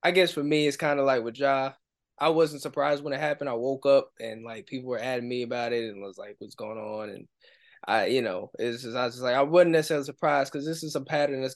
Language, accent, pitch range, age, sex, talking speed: English, American, 130-155 Hz, 10-29, male, 275 wpm